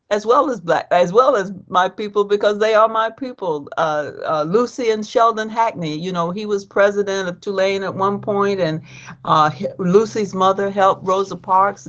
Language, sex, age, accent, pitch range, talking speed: English, female, 60-79, American, 175-225 Hz, 190 wpm